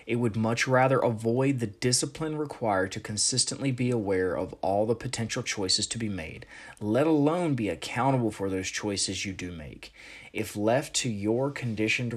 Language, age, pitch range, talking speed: English, 20-39, 100-120 Hz, 175 wpm